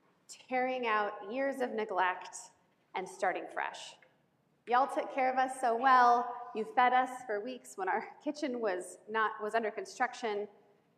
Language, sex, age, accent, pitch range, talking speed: English, female, 30-49, American, 200-265 Hz, 155 wpm